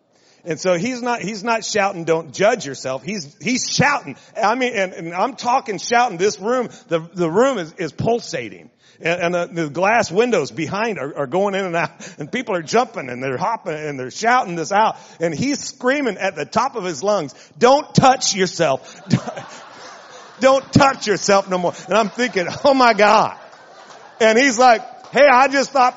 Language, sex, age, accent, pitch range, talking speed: English, male, 40-59, American, 160-220 Hz, 190 wpm